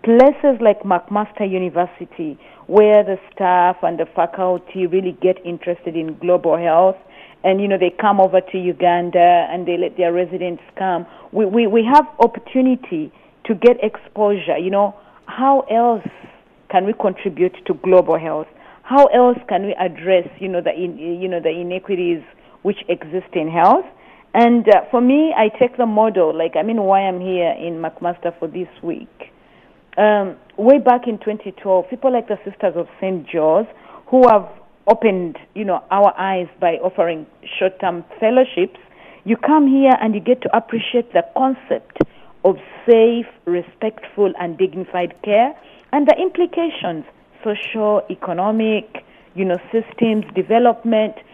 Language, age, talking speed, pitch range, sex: English, 40-59, 160 wpm, 180-230 Hz, female